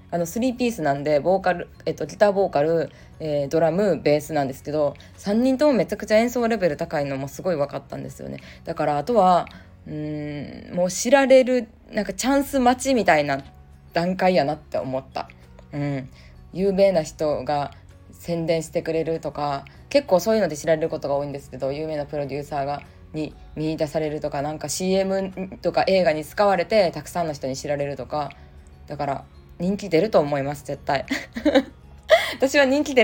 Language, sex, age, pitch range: Japanese, female, 20-39, 145-200 Hz